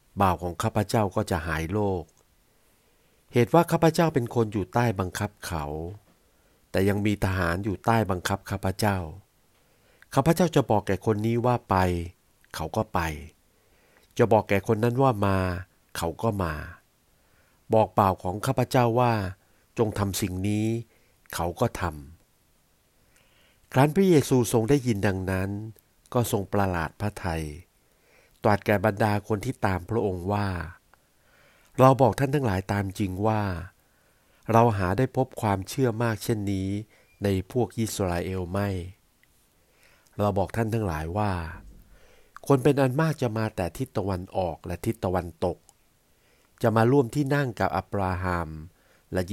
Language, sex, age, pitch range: Thai, male, 60-79, 95-115 Hz